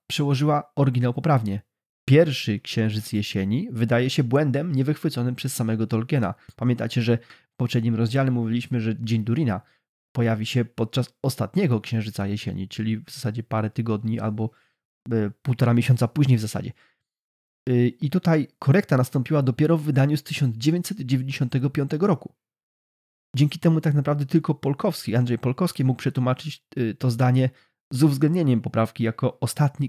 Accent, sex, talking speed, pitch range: native, male, 135 wpm, 115-140 Hz